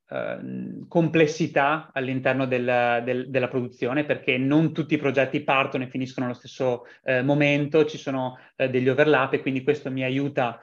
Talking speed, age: 160 wpm, 30-49